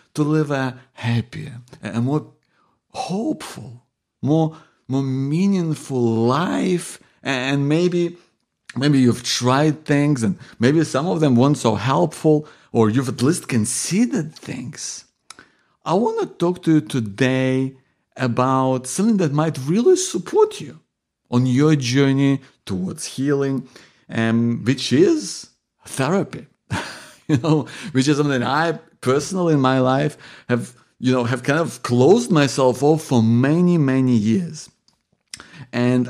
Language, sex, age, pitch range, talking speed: English, male, 50-69, 125-155 Hz, 130 wpm